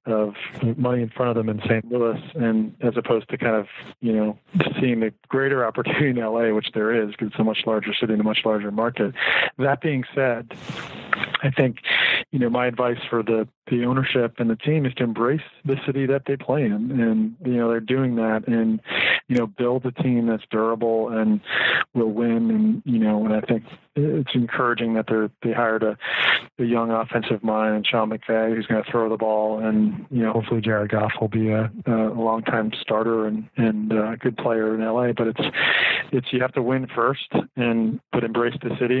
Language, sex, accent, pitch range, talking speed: English, male, American, 110-125 Hz, 210 wpm